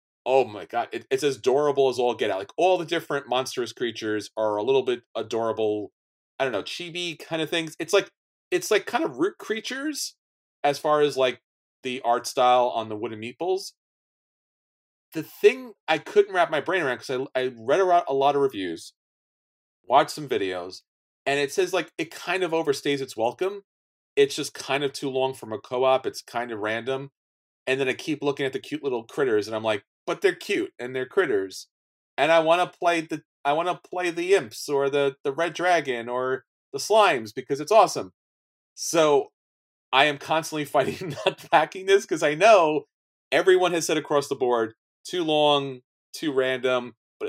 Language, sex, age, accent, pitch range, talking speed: English, male, 30-49, American, 130-190 Hz, 195 wpm